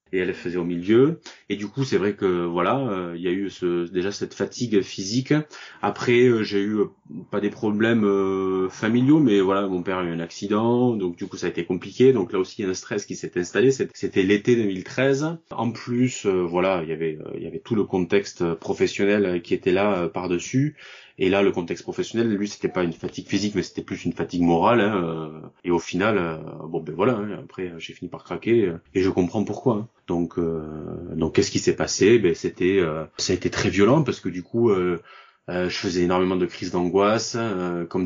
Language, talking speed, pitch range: French, 230 wpm, 85-105 Hz